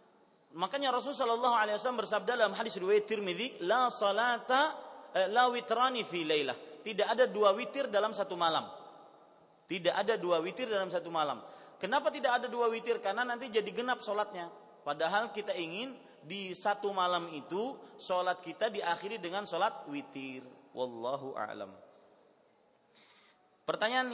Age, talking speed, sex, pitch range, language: 30-49, 130 wpm, male, 170-220 Hz, Malay